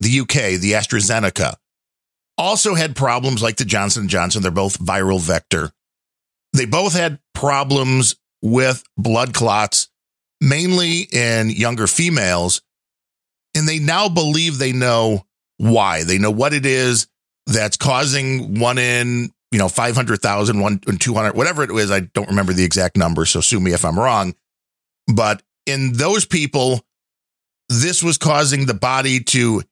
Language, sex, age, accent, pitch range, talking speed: English, male, 40-59, American, 110-150 Hz, 145 wpm